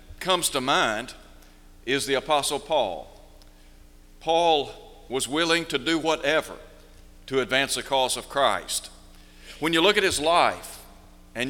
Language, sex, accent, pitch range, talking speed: English, male, American, 105-165 Hz, 135 wpm